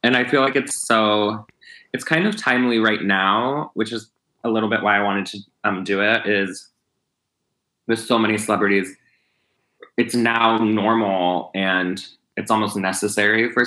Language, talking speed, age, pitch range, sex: English, 160 wpm, 20-39, 100-115 Hz, male